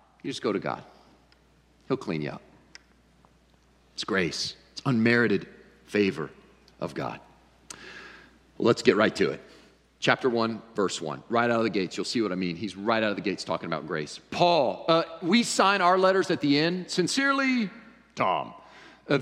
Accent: American